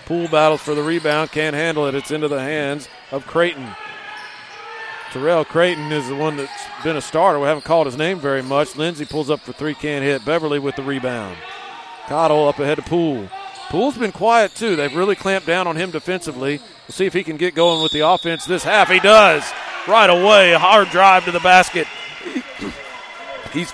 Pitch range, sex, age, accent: 150-185 Hz, male, 40-59, American